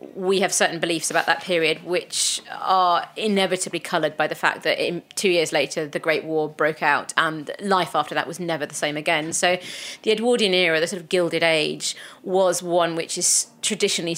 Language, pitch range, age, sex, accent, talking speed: English, 155-195 Hz, 30-49, female, British, 195 wpm